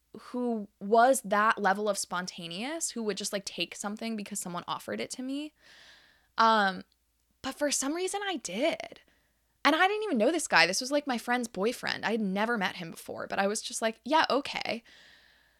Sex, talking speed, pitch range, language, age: female, 195 wpm, 180-235 Hz, English, 10-29